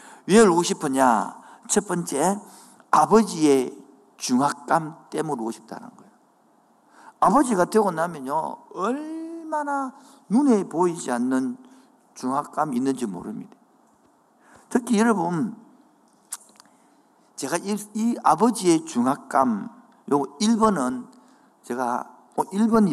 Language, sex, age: Korean, male, 50-69